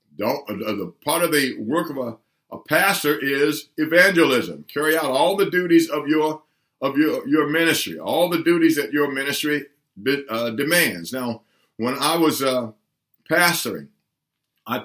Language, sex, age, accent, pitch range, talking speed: English, male, 50-69, American, 130-160 Hz, 165 wpm